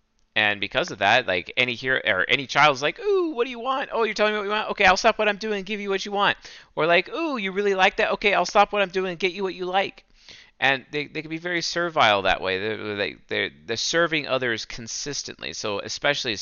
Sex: male